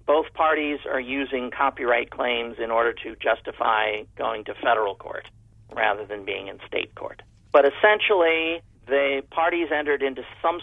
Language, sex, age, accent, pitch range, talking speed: English, male, 50-69, American, 115-155 Hz, 150 wpm